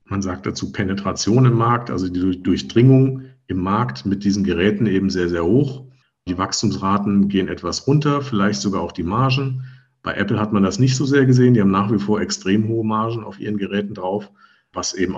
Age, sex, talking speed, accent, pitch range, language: 50-69, male, 200 wpm, German, 95-120 Hz, German